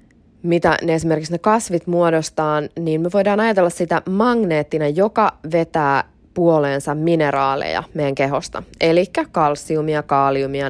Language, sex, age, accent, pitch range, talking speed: Finnish, female, 20-39, native, 145-180 Hz, 110 wpm